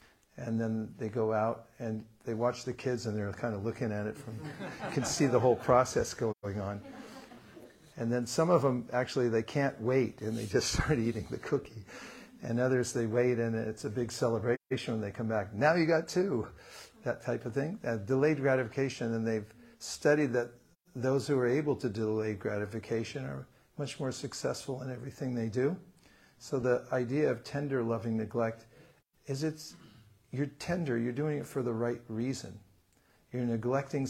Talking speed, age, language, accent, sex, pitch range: 185 wpm, 50-69, English, American, male, 110-130 Hz